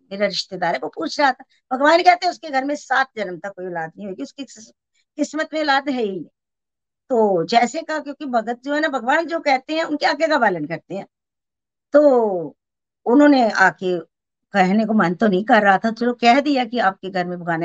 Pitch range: 190-285 Hz